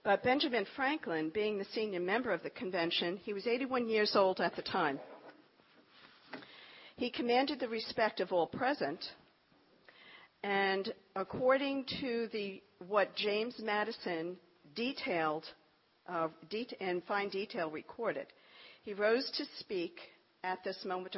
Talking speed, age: 125 wpm, 50-69